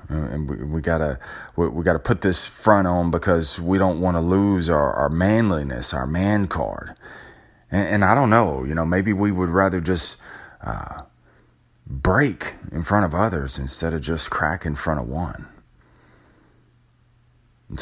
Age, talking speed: 30-49, 180 wpm